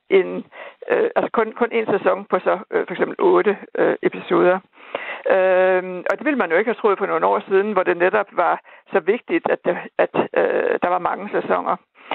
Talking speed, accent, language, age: 210 wpm, native, Danish, 60-79